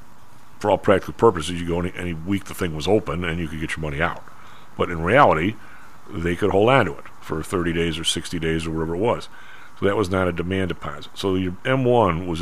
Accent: American